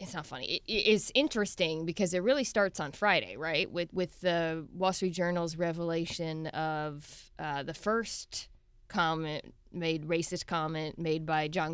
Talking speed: 160 wpm